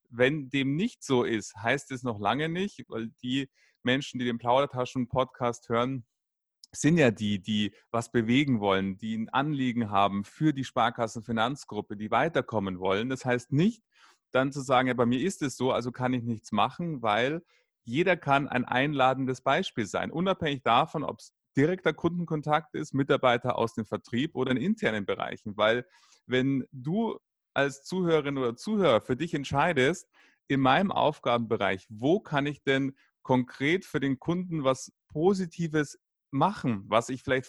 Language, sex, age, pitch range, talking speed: German, male, 30-49, 120-155 Hz, 160 wpm